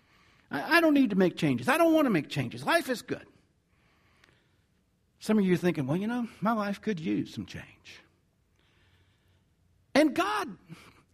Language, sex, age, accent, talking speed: English, male, 60-79, American, 165 wpm